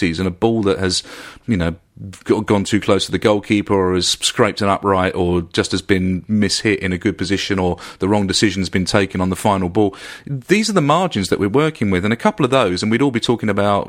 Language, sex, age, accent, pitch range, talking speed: English, male, 40-59, British, 95-120 Hz, 245 wpm